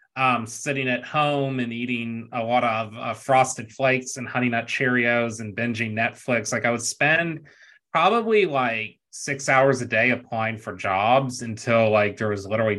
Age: 30-49